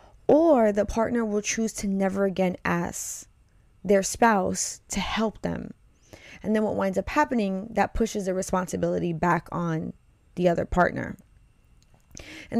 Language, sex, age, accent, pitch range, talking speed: English, female, 20-39, American, 175-220 Hz, 145 wpm